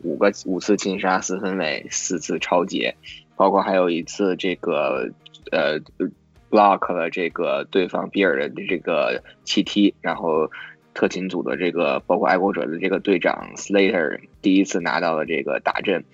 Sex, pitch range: male, 90-105 Hz